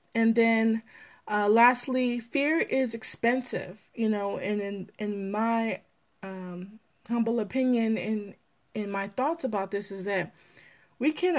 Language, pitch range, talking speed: English, 200-250 Hz, 135 wpm